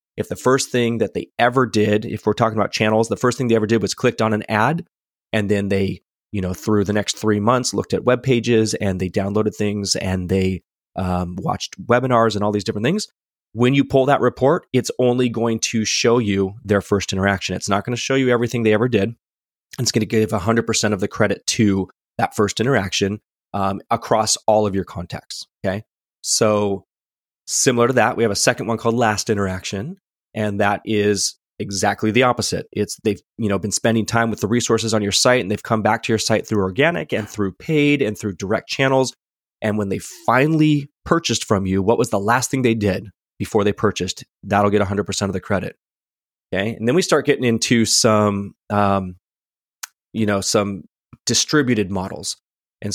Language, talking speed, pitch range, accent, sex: English, 205 wpm, 100-120 Hz, American, male